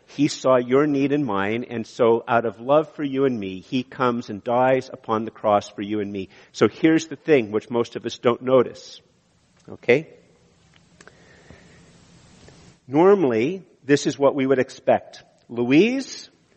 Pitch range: 135-200 Hz